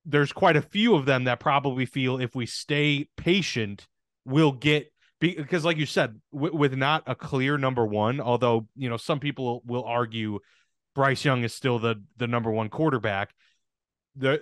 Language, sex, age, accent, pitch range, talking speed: English, male, 30-49, American, 115-150 Hz, 180 wpm